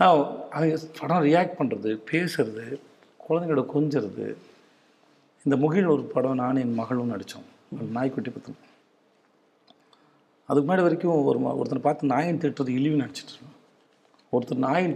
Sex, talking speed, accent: male, 120 wpm, native